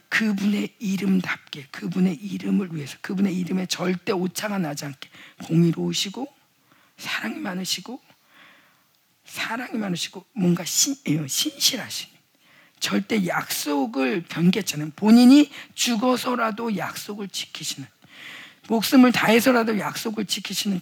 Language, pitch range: Korean, 175-235 Hz